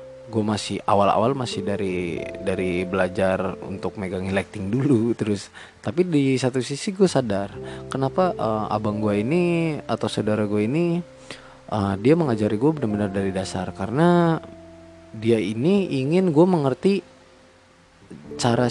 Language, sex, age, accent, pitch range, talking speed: Indonesian, male, 20-39, native, 100-135 Hz, 130 wpm